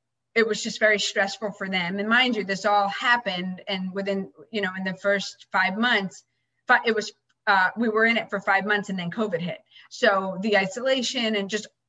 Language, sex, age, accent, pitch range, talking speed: English, female, 30-49, American, 180-220 Hz, 205 wpm